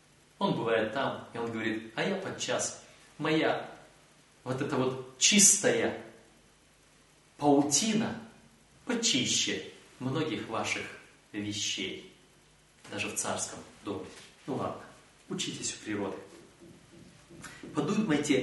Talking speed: 95 wpm